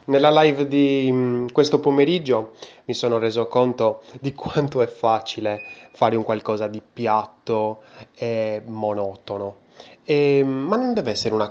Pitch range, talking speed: 110-140 Hz, 135 wpm